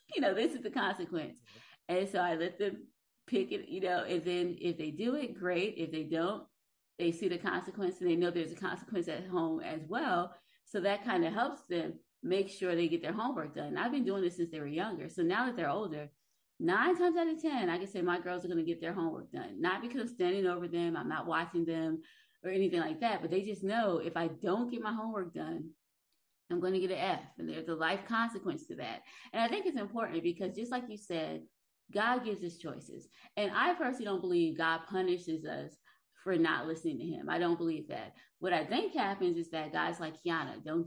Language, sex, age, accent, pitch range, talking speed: English, female, 20-39, American, 170-225 Hz, 235 wpm